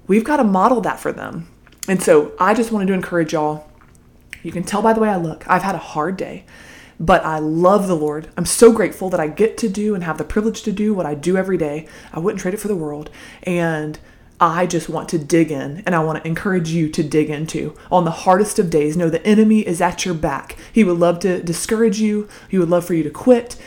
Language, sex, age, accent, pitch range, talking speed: English, female, 20-39, American, 160-210 Hz, 255 wpm